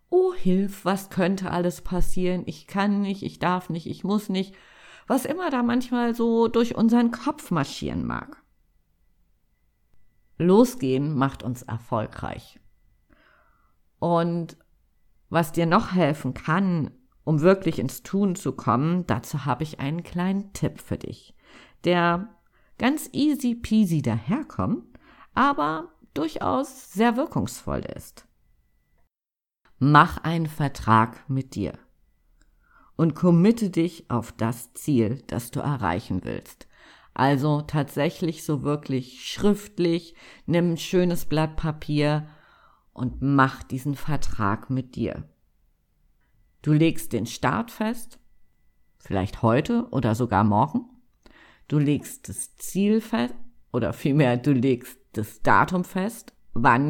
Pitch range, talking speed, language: 130-195 Hz, 120 wpm, German